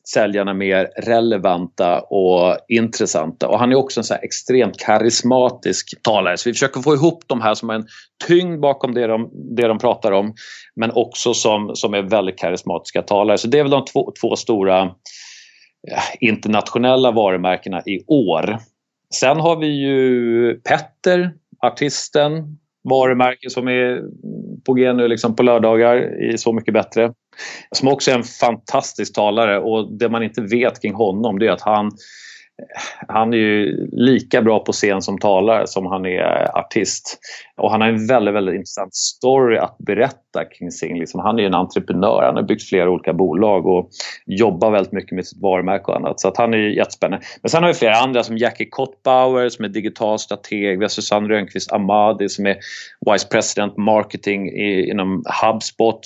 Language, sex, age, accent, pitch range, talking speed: Swedish, male, 30-49, native, 105-125 Hz, 175 wpm